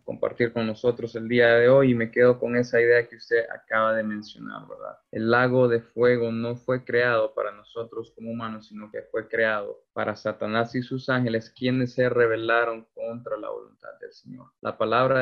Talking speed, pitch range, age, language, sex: 195 wpm, 115-130 Hz, 20-39, Spanish, male